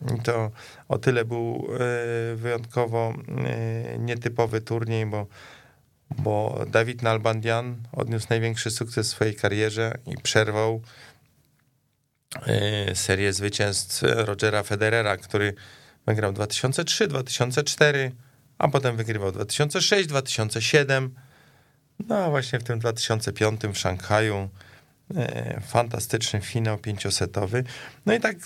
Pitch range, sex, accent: 110-130 Hz, male, native